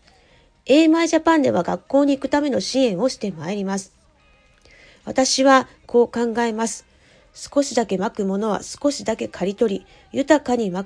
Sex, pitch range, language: female, 195-275 Hz, Japanese